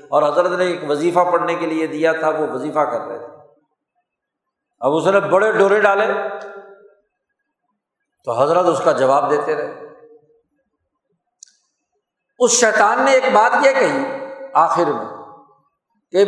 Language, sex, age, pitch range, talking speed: Urdu, male, 60-79, 165-235 Hz, 140 wpm